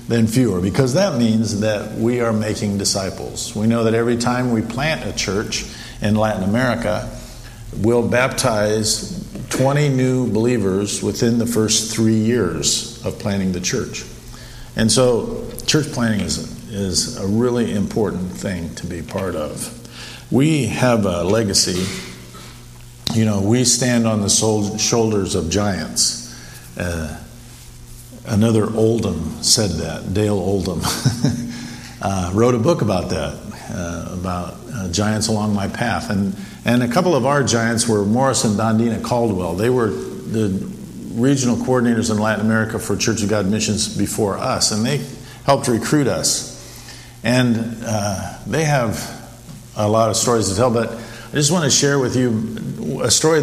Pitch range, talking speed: 105-120 Hz, 150 wpm